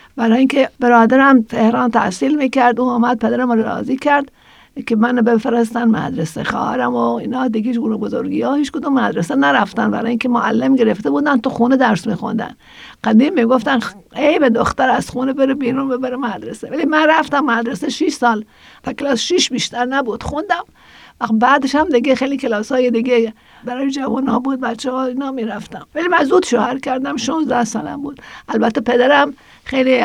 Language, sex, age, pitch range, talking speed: Persian, female, 50-69, 230-270 Hz, 170 wpm